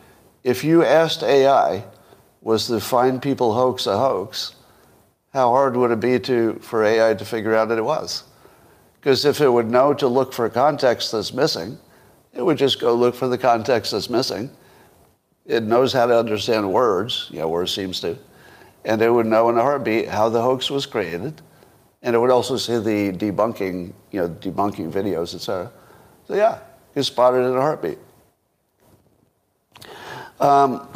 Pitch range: 110-135 Hz